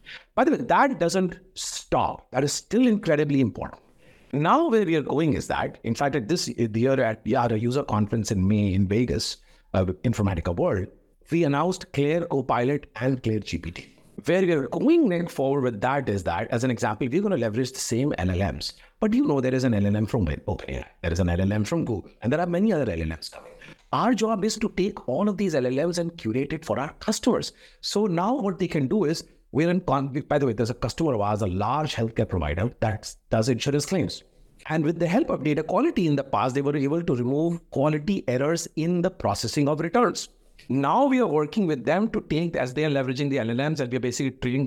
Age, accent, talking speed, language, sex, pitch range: 60-79, Indian, 220 wpm, English, male, 120-185 Hz